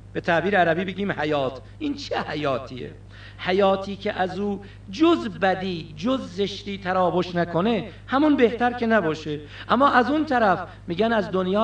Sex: male